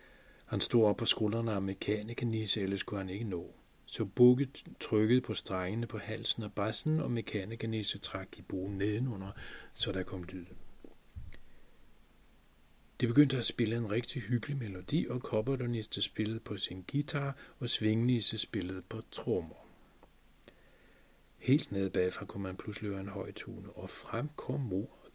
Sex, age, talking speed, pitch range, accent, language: male, 40-59, 150 wpm, 95-120 Hz, native, Danish